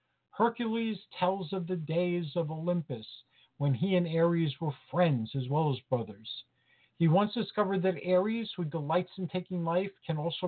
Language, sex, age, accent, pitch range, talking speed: English, male, 50-69, American, 150-195 Hz, 165 wpm